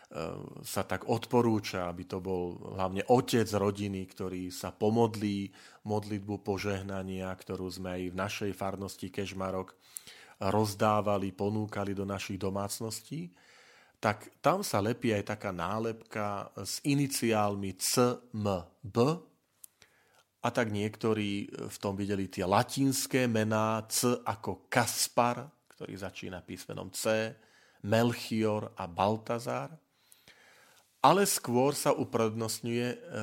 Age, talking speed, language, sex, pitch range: 40-59, 105 wpm, Slovak, male, 100-120 Hz